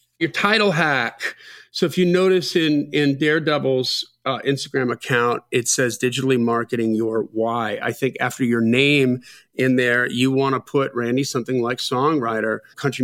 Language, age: English, 40-59